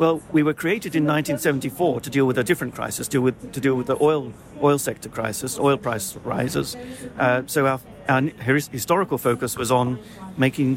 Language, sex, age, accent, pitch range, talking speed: English, male, 50-69, British, 125-145 Hz, 195 wpm